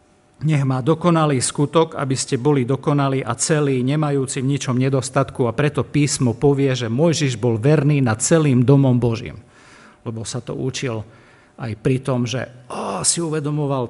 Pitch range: 120-145 Hz